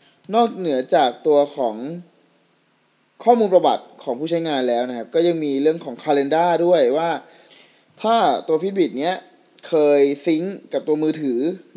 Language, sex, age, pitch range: Thai, male, 20-39, 135-175 Hz